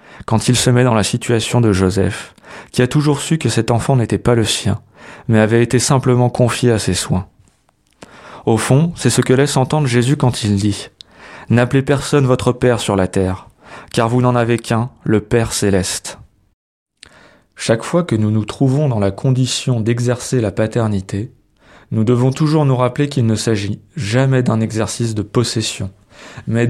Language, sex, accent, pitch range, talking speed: French, male, French, 110-130 Hz, 185 wpm